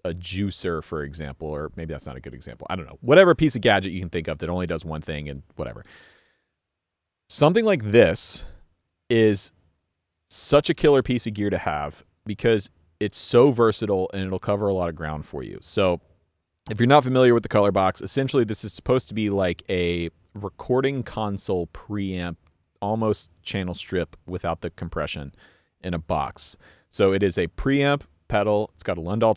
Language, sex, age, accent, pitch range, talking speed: English, male, 30-49, American, 85-110 Hz, 190 wpm